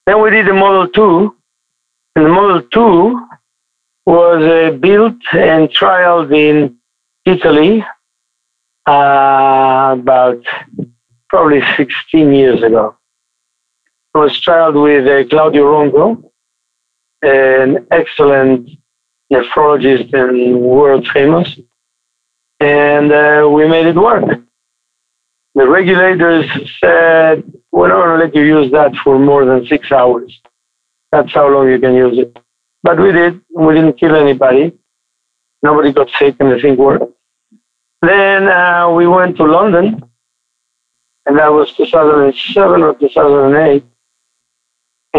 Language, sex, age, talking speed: English, male, 50-69, 120 wpm